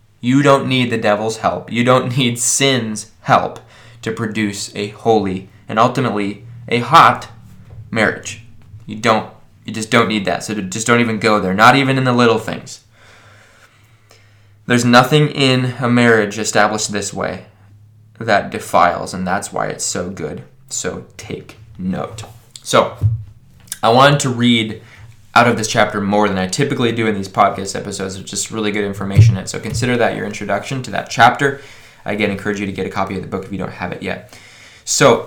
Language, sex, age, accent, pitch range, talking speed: English, male, 20-39, American, 105-125 Hz, 185 wpm